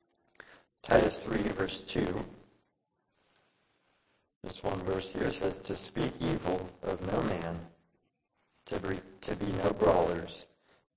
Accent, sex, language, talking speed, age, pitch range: American, male, English, 110 wpm, 40-59, 90-100 Hz